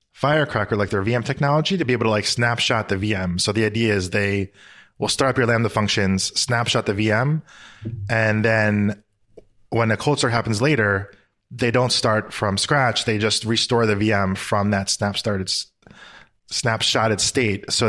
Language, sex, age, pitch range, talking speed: English, male, 20-39, 105-130 Hz, 175 wpm